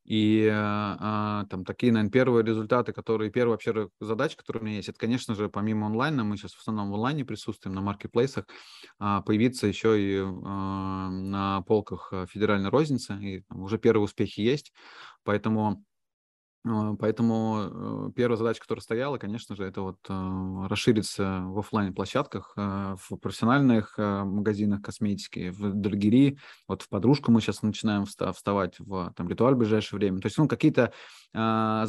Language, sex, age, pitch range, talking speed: Russian, male, 20-39, 100-115 Hz, 145 wpm